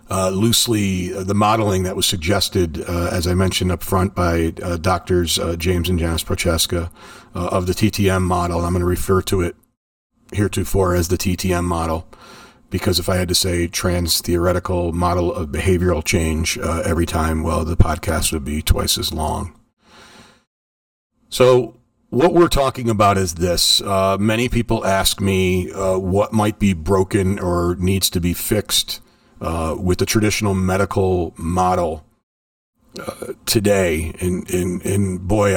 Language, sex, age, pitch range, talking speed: English, male, 40-59, 90-100 Hz, 160 wpm